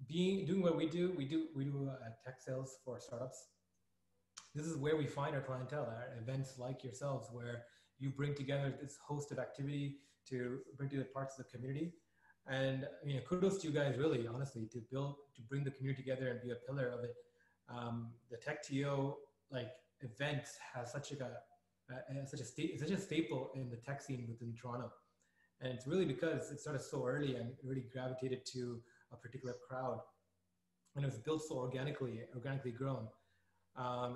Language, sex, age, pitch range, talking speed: English, male, 20-39, 125-145 Hz, 195 wpm